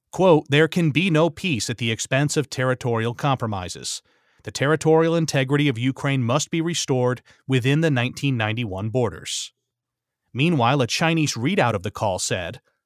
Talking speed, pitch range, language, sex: 150 wpm, 120-155 Hz, English, male